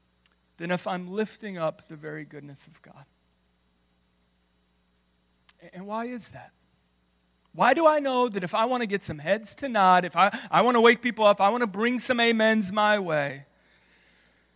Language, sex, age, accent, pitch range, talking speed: English, male, 30-49, American, 160-235 Hz, 180 wpm